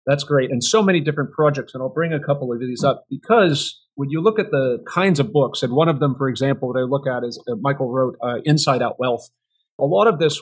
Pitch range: 125-155 Hz